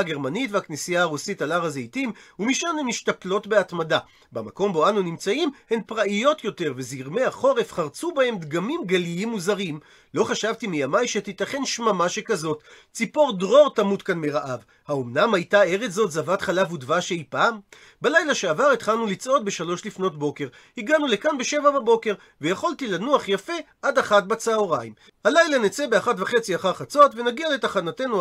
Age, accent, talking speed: 40-59, native, 145 wpm